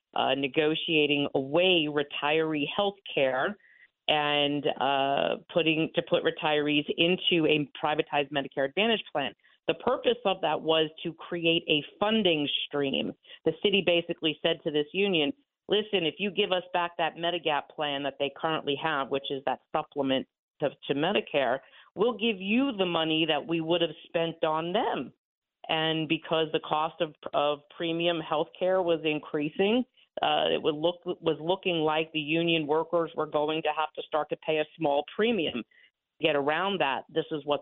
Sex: female